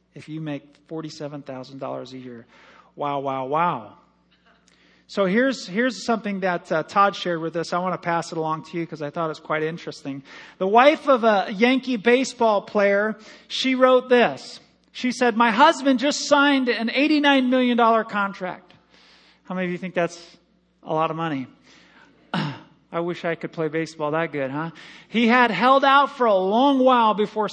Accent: American